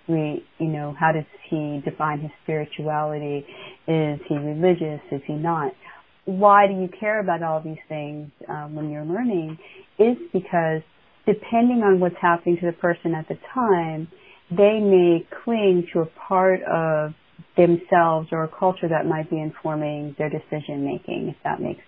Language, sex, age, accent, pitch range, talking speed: English, female, 30-49, American, 155-190 Hz, 165 wpm